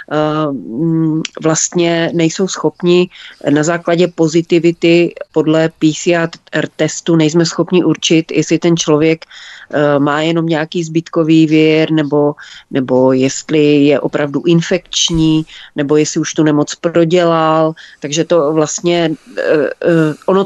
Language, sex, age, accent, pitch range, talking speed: Czech, female, 30-49, native, 160-180 Hz, 105 wpm